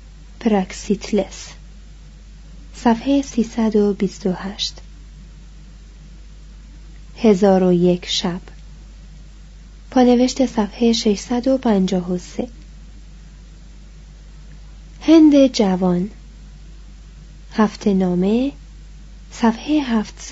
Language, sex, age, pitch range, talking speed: Persian, female, 30-49, 190-240 Hz, 40 wpm